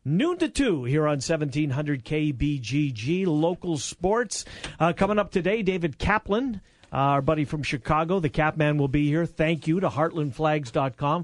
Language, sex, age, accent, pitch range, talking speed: English, male, 40-59, American, 140-180 Hz, 155 wpm